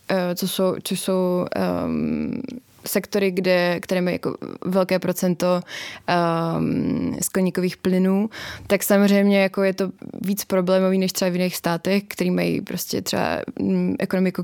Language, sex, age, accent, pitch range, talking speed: Czech, female, 20-39, native, 180-195 Hz, 130 wpm